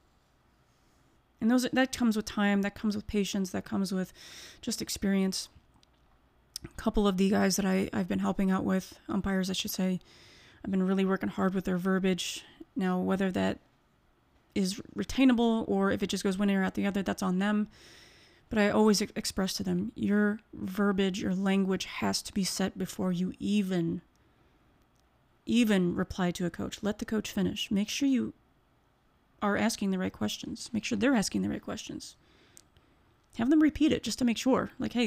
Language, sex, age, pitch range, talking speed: English, female, 30-49, 190-225 Hz, 185 wpm